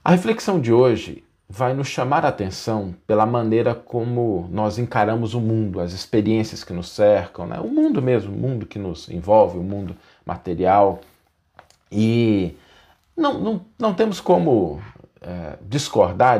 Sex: male